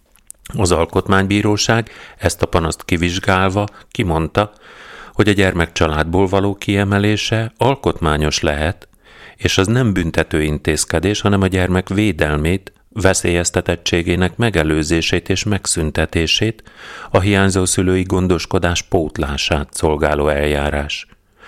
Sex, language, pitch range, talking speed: male, Hungarian, 80-105 Hz, 100 wpm